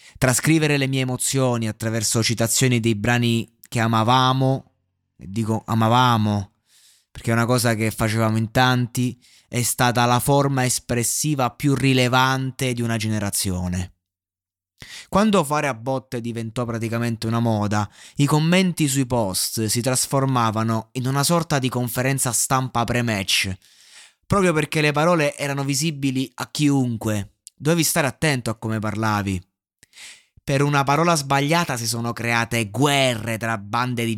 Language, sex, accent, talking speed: Italian, male, native, 135 wpm